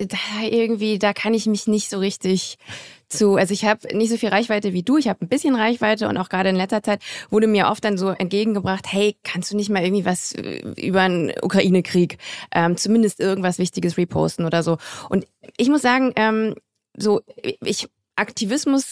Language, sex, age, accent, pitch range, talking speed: German, female, 20-39, German, 200-235 Hz, 195 wpm